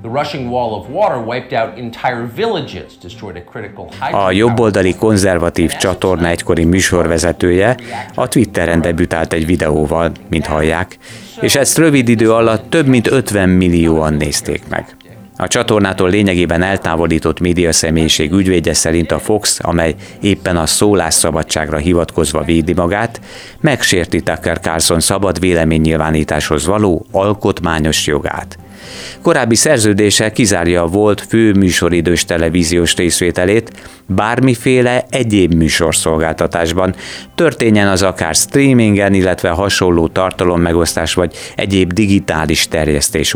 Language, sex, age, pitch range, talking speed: Hungarian, male, 30-49, 80-110 Hz, 100 wpm